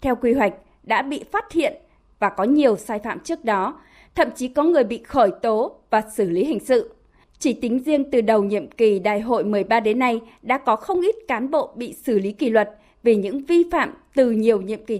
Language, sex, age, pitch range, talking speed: Vietnamese, female, 20-39, 225-295 Hz, 230 wpm